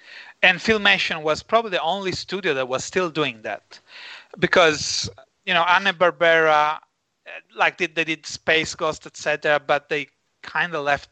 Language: English